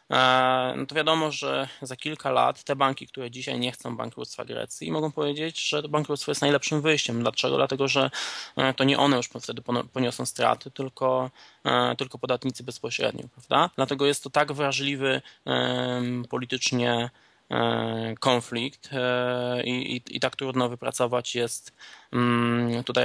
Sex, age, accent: male, 20-39, native